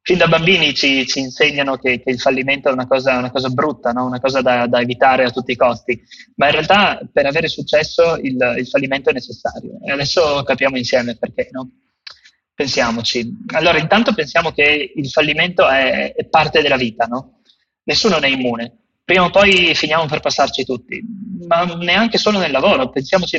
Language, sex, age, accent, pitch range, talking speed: Italian, male, 20-39, native, 135-175 Hz, 190 wpm